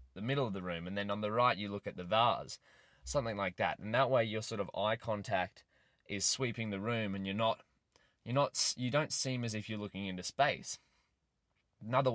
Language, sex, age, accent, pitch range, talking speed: English, male, 20-39, Australian, 105-135 Hz, 220 wpm